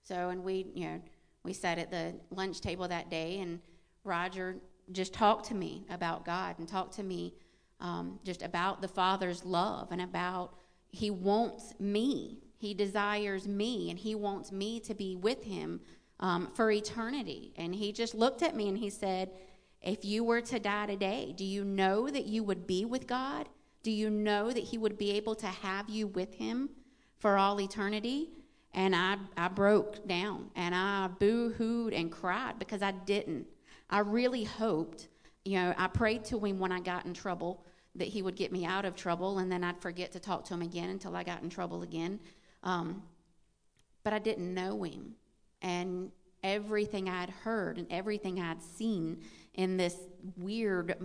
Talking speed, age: 185 wpm, 40-59